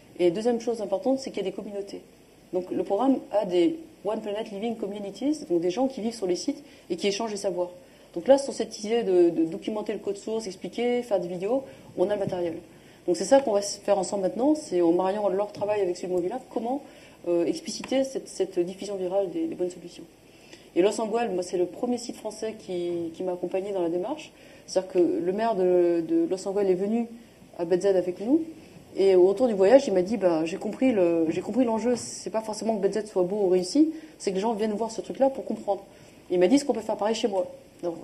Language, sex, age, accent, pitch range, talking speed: French, female, 30-49, French, 185-240 Hz, 240 wpm